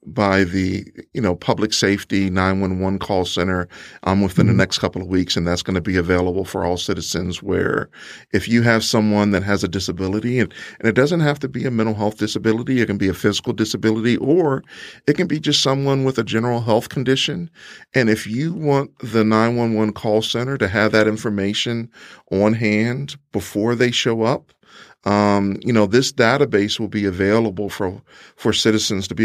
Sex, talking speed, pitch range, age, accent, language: male, 190 wpm, 100-120 Hz, 40-59, American, English